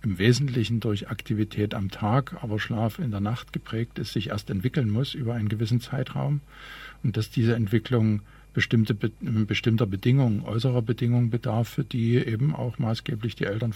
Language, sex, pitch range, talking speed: German, male, 105-130 Hz, 160 wpm